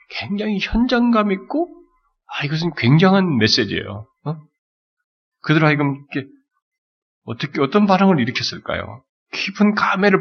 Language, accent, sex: Korean, native, male